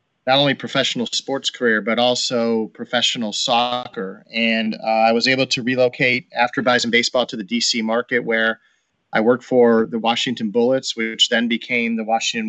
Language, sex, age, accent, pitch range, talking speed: English, male, 30-49, American, 115-130 Hz, 170 wpm